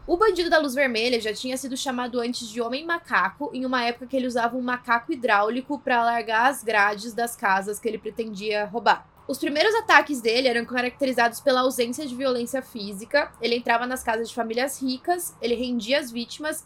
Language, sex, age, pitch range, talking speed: Portuguese, female, 10-29, 230-275 Hz, 195 wpm